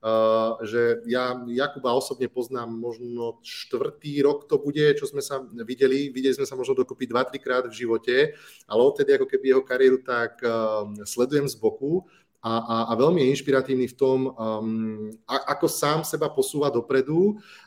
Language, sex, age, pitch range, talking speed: Slovak, male, 30-49, 120-145 Hz, 155 wpm